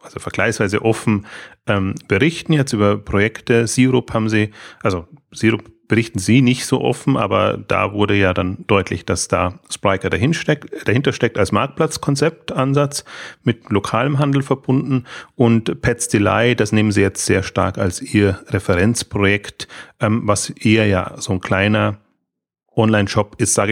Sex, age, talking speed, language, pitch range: male, 30-49, 145 wpm, German, 95-115 Hz